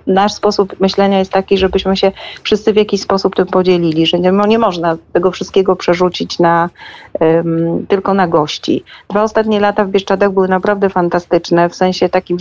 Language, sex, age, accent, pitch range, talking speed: Polish, female, 40-59, native, 175-205 Hz, 175 wpm